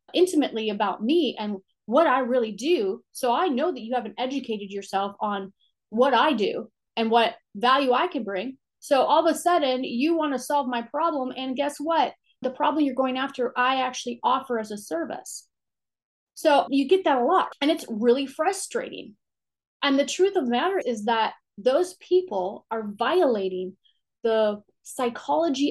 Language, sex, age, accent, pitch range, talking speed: English, female, 30-49, American, 225-310 Hz, 175 wpm